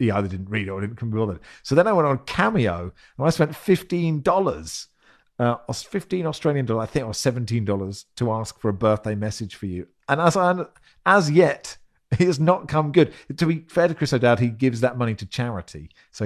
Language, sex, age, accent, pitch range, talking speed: English, male, 40-59, British, 105-135 Hz, 225 wpm